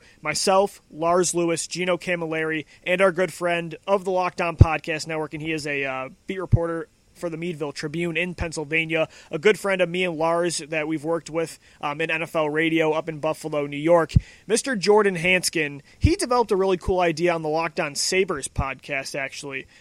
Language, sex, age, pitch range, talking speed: English, male, 30-49, 160-195 Hz, 190 wpm